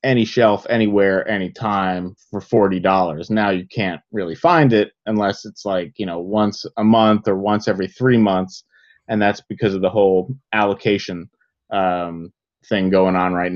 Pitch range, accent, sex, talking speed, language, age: 100-125 Hz, American, male, 165 wpm, English, 30-49